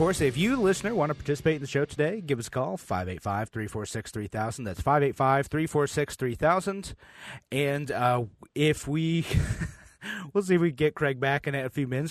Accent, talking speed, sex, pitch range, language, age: American, 165 wpm, male, 95-140 Hz, English, 30-49